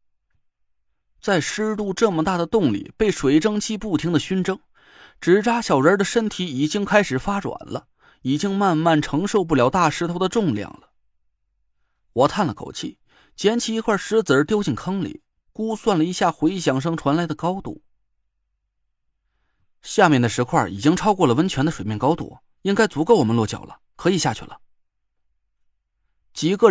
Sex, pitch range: male, 140-205 Hz